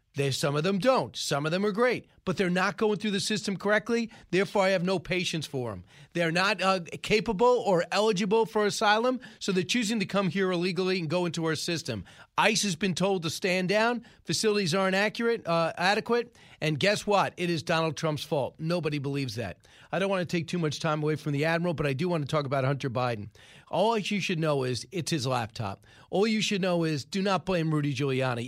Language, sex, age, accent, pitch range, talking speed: English, male, 40-59, American, 155-200 Hz, 225 wpm